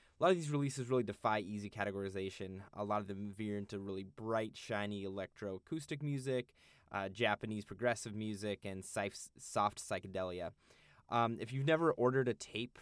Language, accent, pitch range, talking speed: English, American, 100-120 Hz, 160 wpm